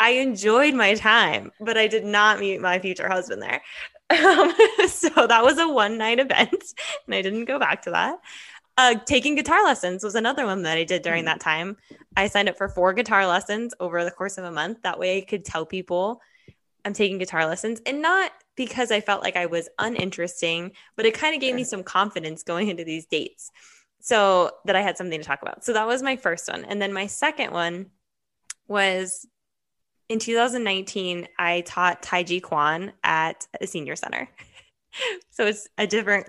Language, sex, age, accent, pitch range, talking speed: English, female, 10-29, American, 180-245 Hz, 195 wpm